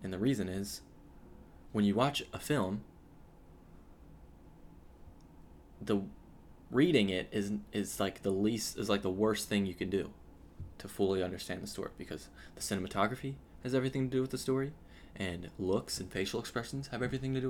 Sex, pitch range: male, 85-120 Hz